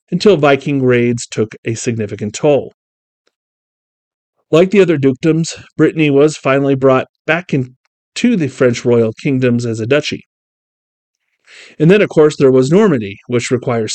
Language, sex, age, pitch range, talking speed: English, male, 40-59, 115-145 Hz, 140 wpm